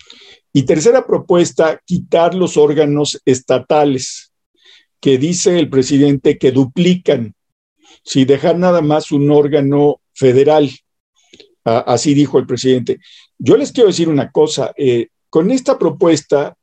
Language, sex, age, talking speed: Spanish, male, 50-69, 125 wpm